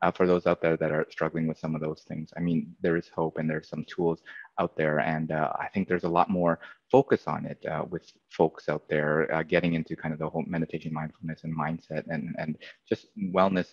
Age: 20-39